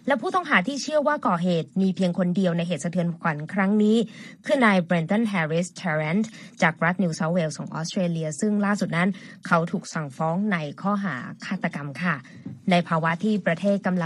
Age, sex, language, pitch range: 20-39, female, Thai, 175-225 Hz